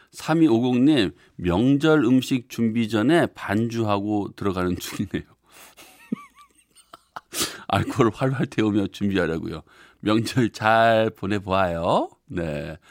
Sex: male